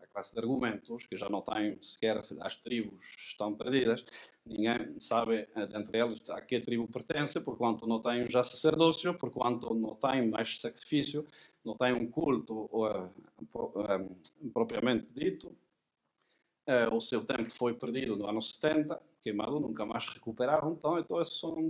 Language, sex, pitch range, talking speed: Portuguese, male, 115-150 Hz, 150 wpm